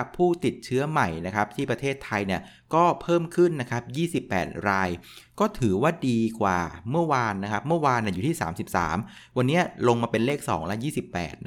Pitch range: 105-140 Hz